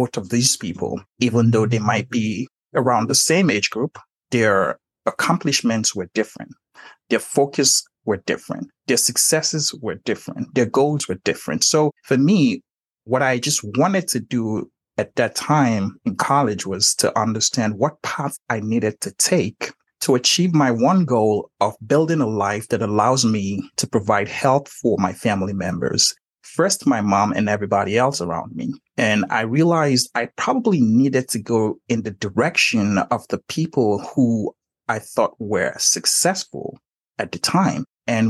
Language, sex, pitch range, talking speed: English, male, 110-150 Hz, 160 wpm